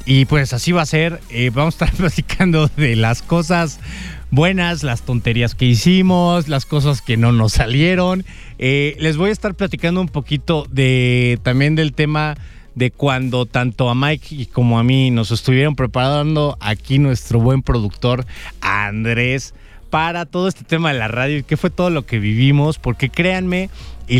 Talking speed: 175 wpm